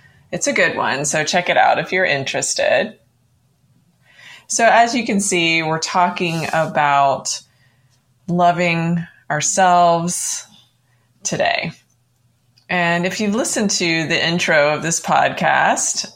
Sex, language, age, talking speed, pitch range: female, English, 20-39, 120 wpm, 140-210 Hz